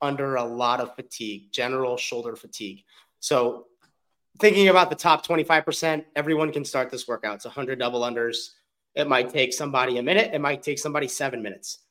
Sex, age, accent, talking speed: male, 30-49, American, 175 wpm